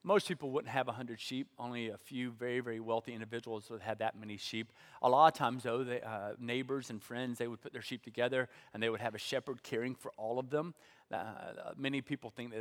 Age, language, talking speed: 40-59, English, 240 wpm